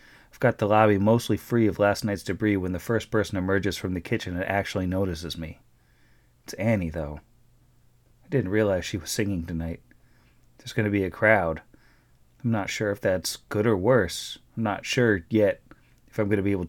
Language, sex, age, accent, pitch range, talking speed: English, male, 30-49, American, 95-115 Hz, 200 wpm